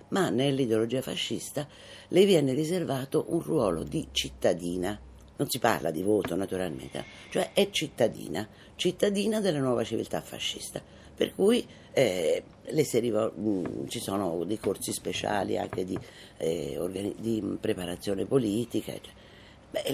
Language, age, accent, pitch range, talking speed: Italian, 50-69, native, 105-155 Hz, 130 wpm